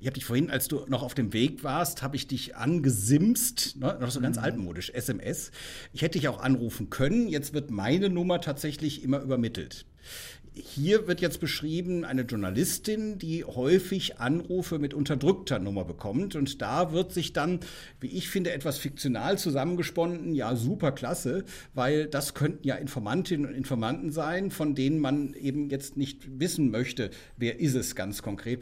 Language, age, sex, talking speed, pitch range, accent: German, 50-69, male, 170 wpm, 125-150 Hz, German